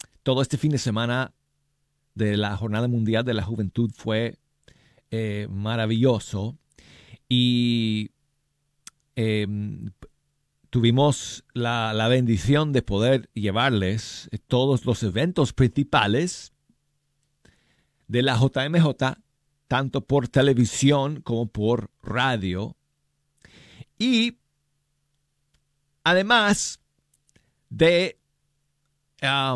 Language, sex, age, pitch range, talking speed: Spanish, male, 40-59, 110-145 Hz, 80 wpm